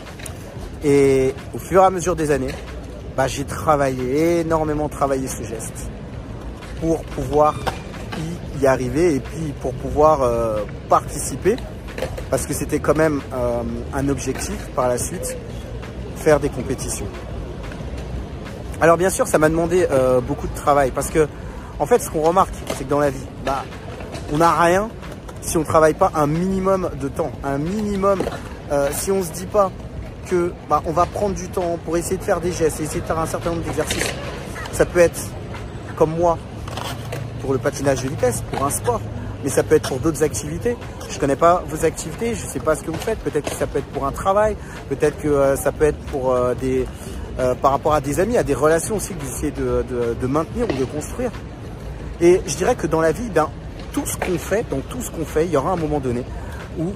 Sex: male